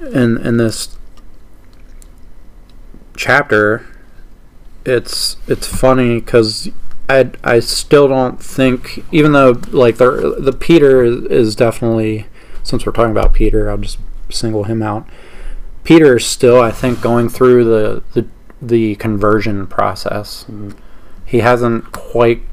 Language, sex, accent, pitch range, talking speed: English, male, American, 105-125 Hz, 125 wpm